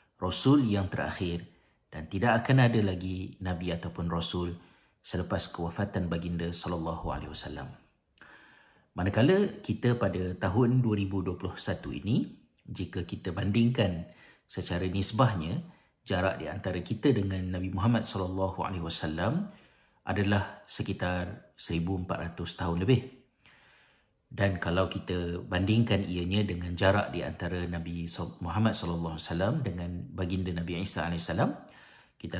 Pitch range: 90-110 Hz